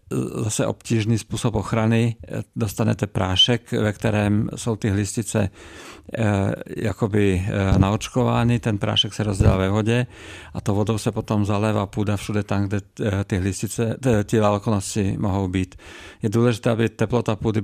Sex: male